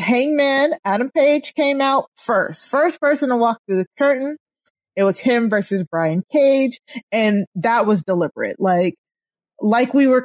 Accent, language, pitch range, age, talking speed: American, English, 175-225 Hz, 30-49, 160 wpm